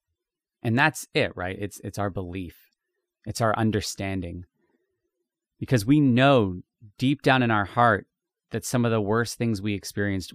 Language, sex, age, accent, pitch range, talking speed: English, male, 30-49, American, 95-125 Hz, 155 wpm